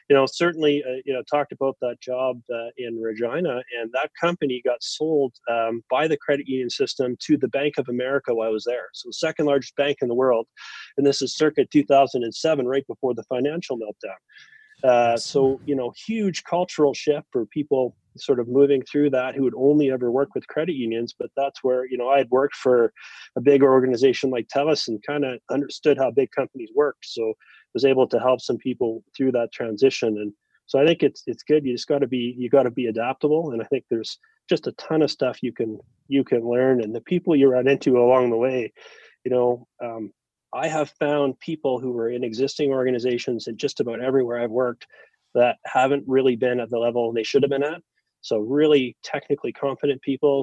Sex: male